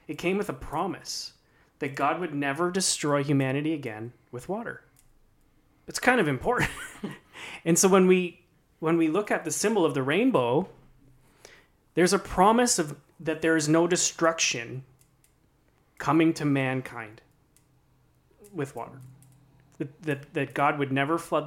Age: 30-49